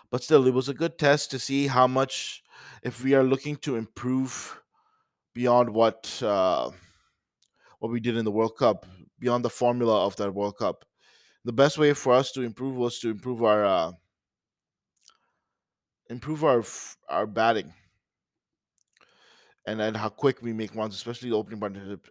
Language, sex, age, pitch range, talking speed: English, male, 20-39, 115-135 Hz, 165 wpm